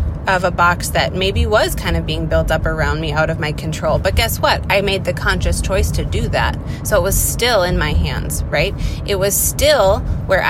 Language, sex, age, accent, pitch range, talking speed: English, female, 20-39, American, 80-90 Hz, 230 wpm